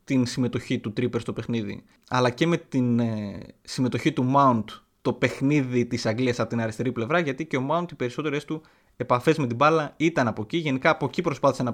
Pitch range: 120-165 Hz